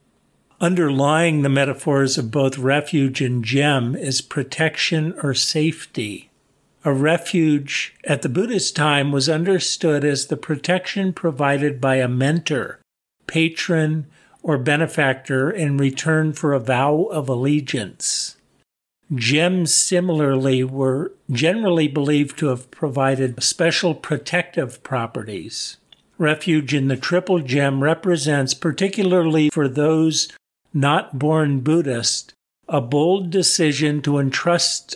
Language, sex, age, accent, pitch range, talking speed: English, male, 50-69, American, 140-165 Hz, 110 wpm